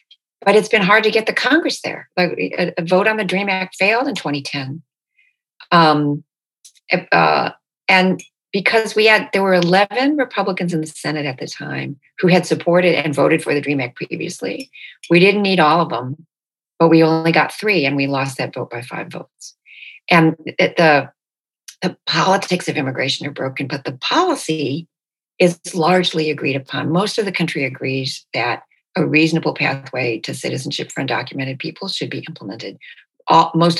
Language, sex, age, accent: English, female, 50-69, American